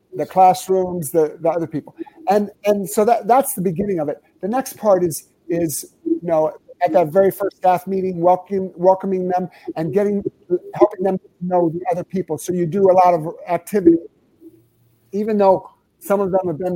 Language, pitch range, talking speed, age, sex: English, 170-220 Hz, 190 wpm, 50-69, male